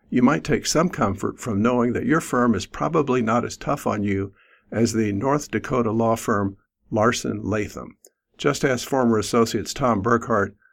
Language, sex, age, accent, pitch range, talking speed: English, male, 60-79, American, 100-120 Hz, 175 wpm